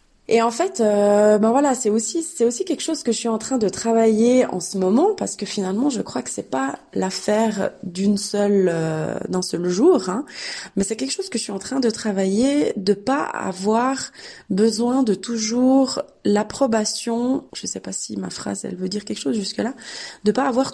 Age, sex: 20-39, female